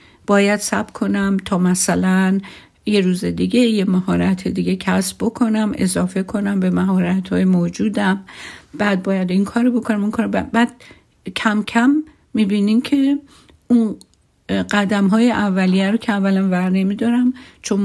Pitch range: 185-220 Hz